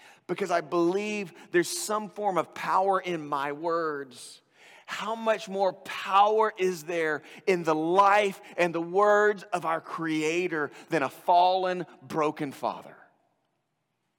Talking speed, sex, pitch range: 130 wpm, male, 135-205 Hz